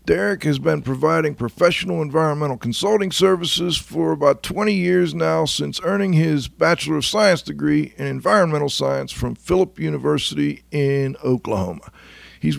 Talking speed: 140 wpm